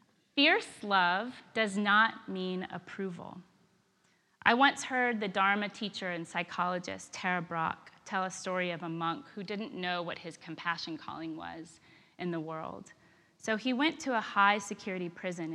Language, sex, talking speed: English, female, 155 wpm